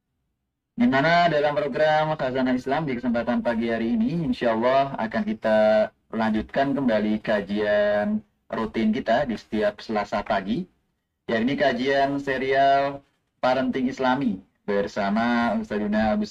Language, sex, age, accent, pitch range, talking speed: Indonesian, male, 30-49, native, 105-130 Hz, 120 wpm